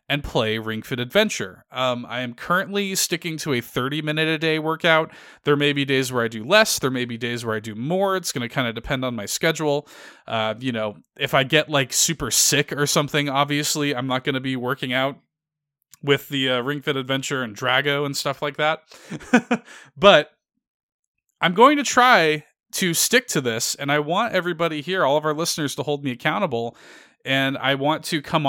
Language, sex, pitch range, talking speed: English, male, 125-155 Hz, 205 wpm